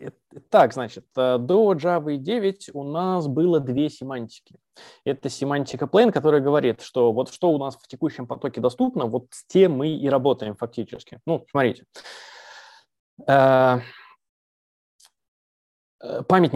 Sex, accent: male, native